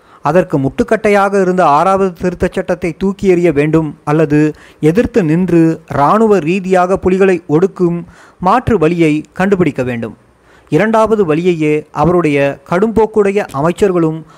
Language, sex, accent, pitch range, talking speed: Tamil, male, native, 155-200 Hz, 110 wpm